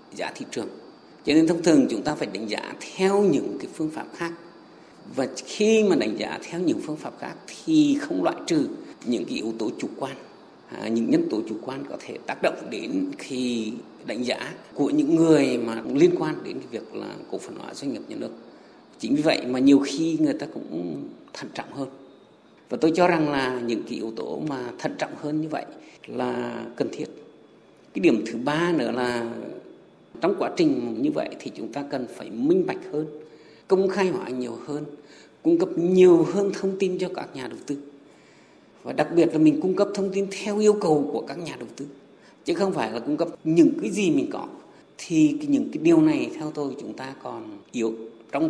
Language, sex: Vietnamese, male